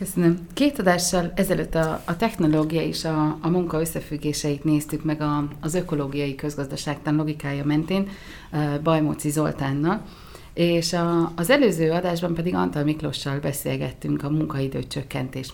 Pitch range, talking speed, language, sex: 140-180 Hz, 130 wpm, Hungarian, female